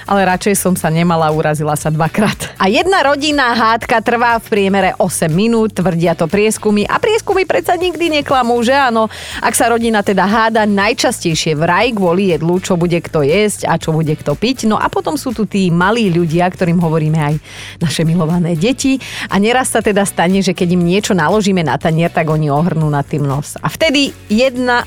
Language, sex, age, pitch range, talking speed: Slovak, female, 30-49, 170-225 Hz, 195 wpm